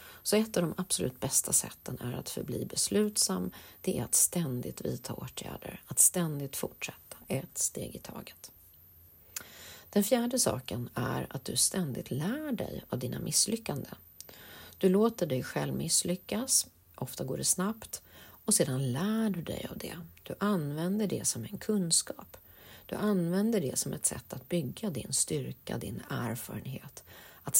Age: 40-59